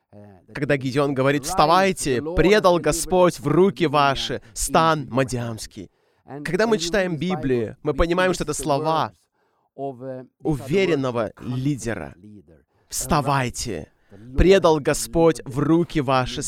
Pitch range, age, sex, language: 130-175 Hz, 20-39, male, Russian